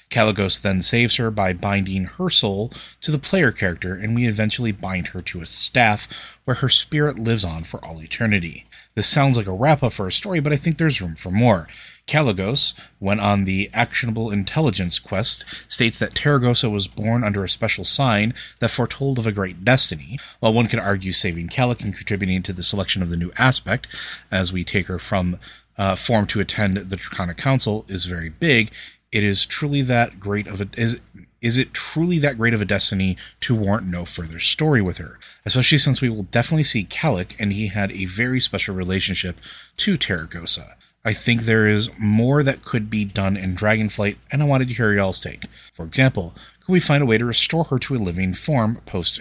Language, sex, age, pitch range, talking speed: English, male, 30-49, 95-125 Hz, 205 wpm